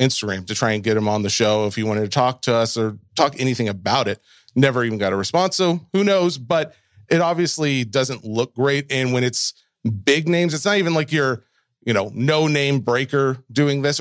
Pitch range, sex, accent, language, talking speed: 115-140 Hz, male, American, English, 225 wpm